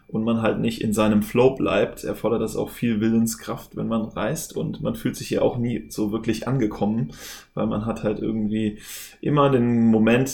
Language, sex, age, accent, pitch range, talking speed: German, male, 20-39, German, 110-120 Hz, 195 wpm